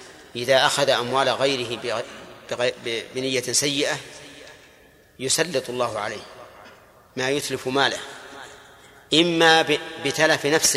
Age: 40-59